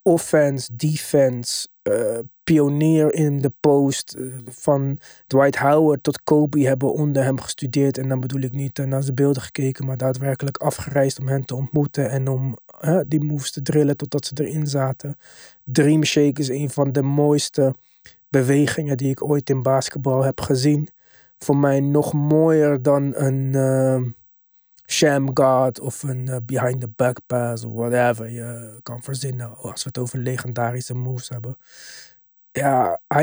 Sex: male